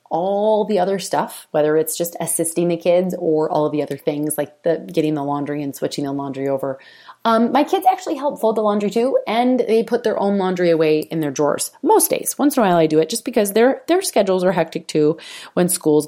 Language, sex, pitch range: English, female, 155-200 Hz